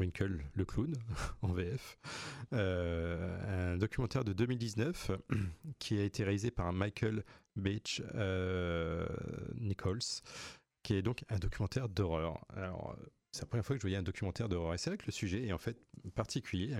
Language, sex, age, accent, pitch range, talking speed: French, male, 40-59, French, 90-115 Hz, 160 wpm